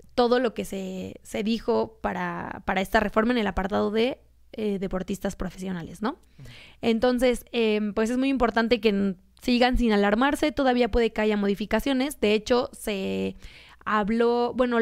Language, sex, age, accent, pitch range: Japanese, female, 20-39, Mexican, 205-240 Hz